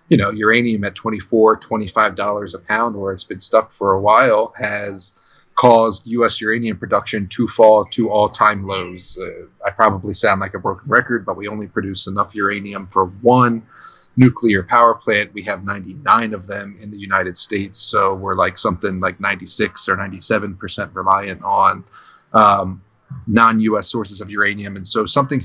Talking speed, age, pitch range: 170 wpm, 30-49, 100-115 Hz